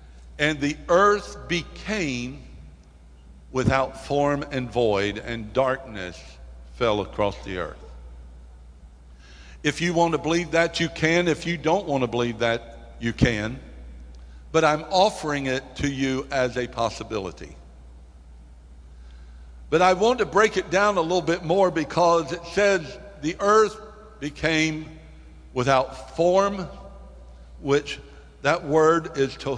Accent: American